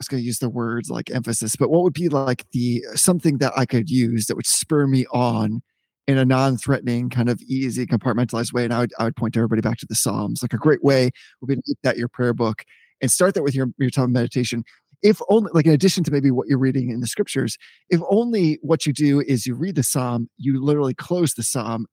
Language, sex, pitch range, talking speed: English, male, 120-150 Hz, 240 wpm